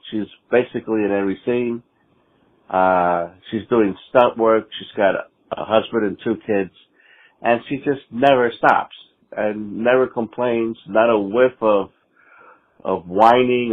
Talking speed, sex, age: 140 wpm, male, 50-69